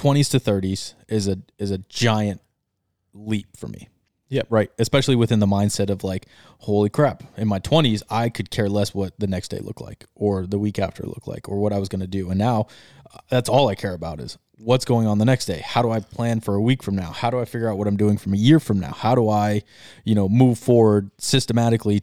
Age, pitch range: 20-39, 100-120 Hz